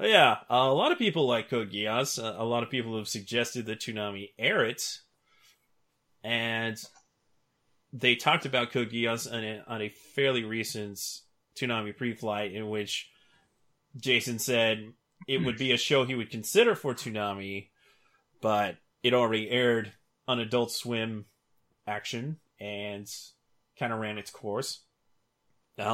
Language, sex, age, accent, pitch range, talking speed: English, male, 30-49, American, 110-130 Hz, 140 wpm